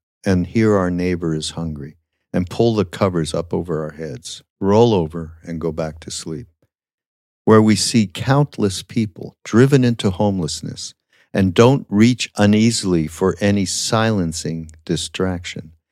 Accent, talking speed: American, 140 wpm